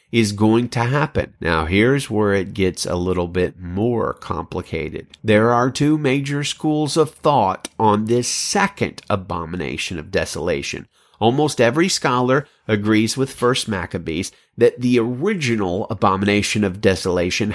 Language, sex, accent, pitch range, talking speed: English, male, American, 95-135 Hz, 135 wpm